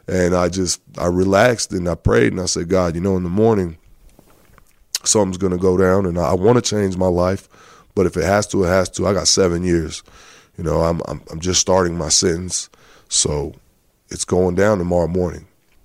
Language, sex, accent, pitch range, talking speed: English, male, American, 85-100 Hz, 215 wpm